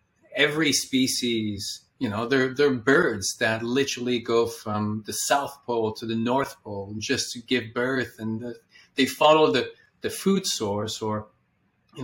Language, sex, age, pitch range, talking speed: English, male, 30-49, 110-130 Hz, 155 wpm